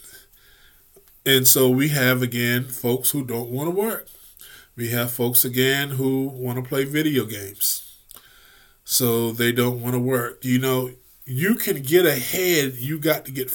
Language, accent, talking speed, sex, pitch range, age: English, American, 165 wpm, male, 125-155 Hz, 20-39